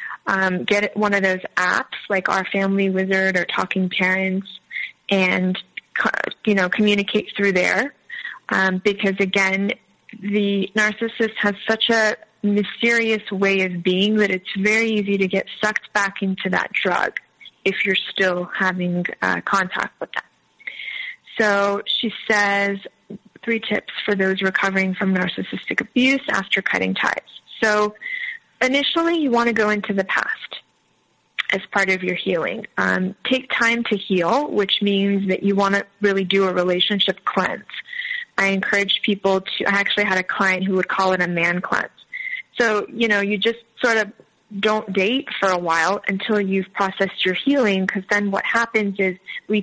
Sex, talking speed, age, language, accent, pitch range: female, 160 wpm, 20-39, English, American, 190-215 Hz